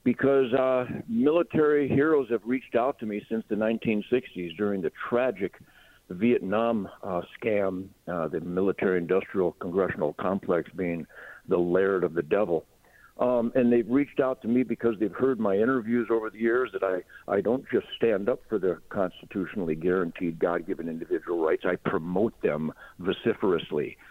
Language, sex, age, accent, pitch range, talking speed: English, male, 60-79, American, 105-130 Hz, 150 wpm